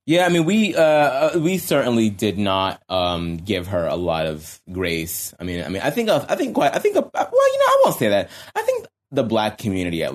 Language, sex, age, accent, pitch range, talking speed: English, male, 20-39, American, 95-135 Hz, 250 wpm